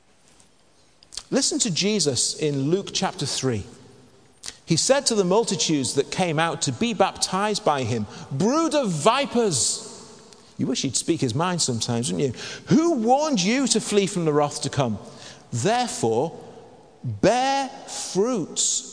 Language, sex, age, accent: English, male, 50-69, British